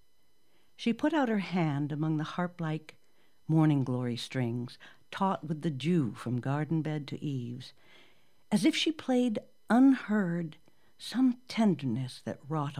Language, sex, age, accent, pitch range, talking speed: English, female, 60-79, American, 135-175 Hz, 140 wpm